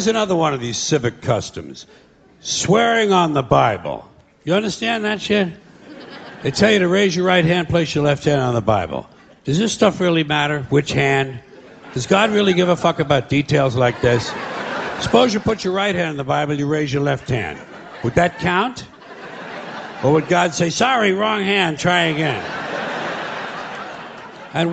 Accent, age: American, 60-79